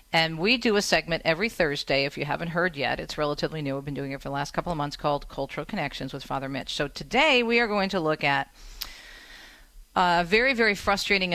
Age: 40-59